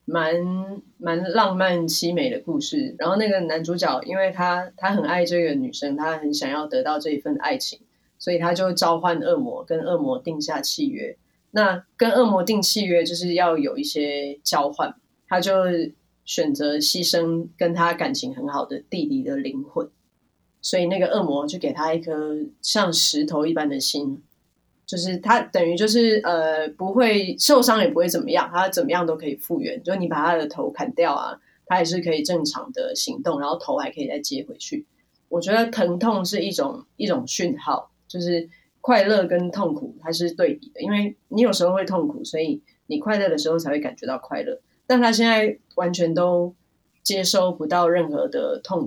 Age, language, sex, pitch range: 20-39, Chinese, female, 165-235 Hz